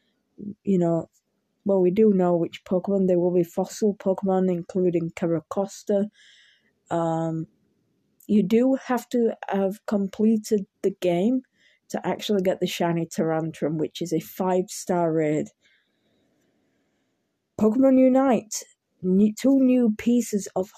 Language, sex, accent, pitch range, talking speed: English, female, British, 175-220 Hz, 115 wpm